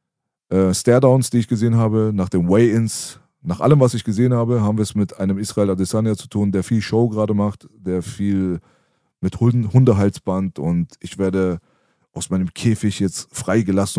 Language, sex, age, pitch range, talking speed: German, male, 30-49, 95-115 Hz, 180 wpm